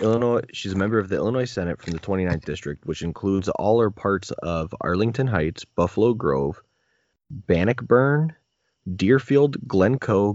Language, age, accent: English, 20-39, American